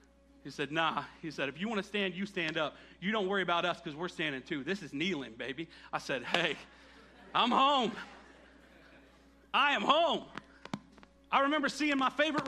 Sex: male